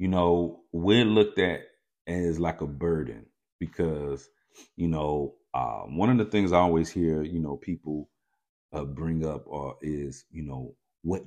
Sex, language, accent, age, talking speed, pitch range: male, English, American, 40-59, 165 wpm, 70-90 Hz